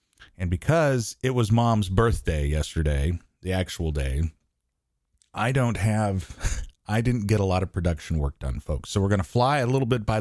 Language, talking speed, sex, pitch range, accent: English, 190 wpm, male, 95-120 Hz, American